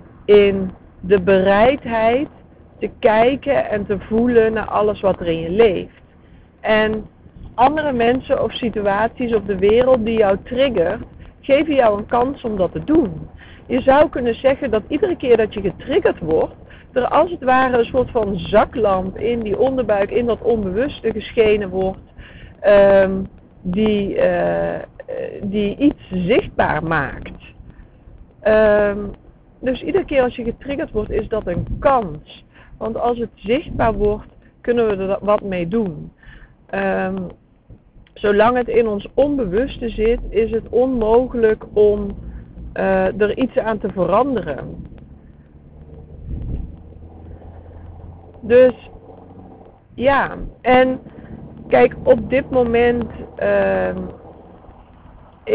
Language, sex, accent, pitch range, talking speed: Dutch, female, Dutch, 190-245 Hz, 125 wpm